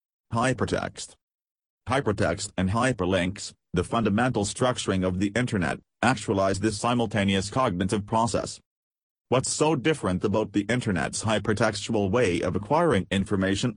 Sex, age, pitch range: male, 40-59, 95-115 Hz